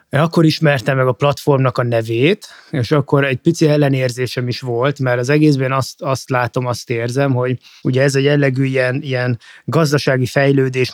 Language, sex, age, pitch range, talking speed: Hungarian, male, 20-39, 120-150 Hz, 175 wpm